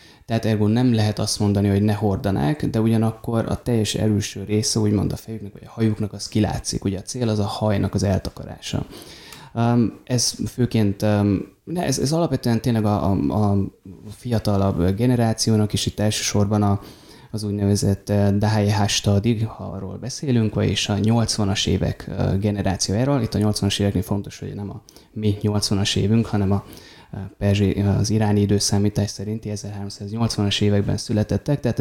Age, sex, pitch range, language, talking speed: 20-39, male, 100-115 Hz, Hungarian, 145 wpm